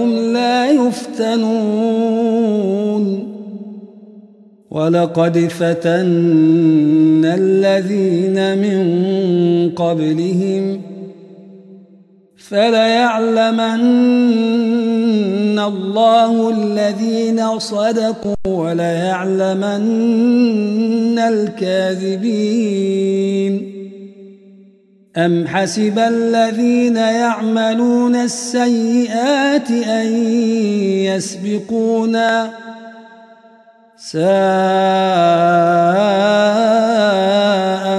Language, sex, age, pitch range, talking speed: Arabic, male, 50-69, 195-230 Hz, 30 wpm